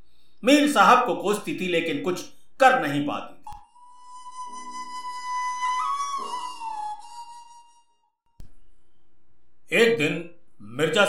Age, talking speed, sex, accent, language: 50-69, 65 wpm, male, native, Hindi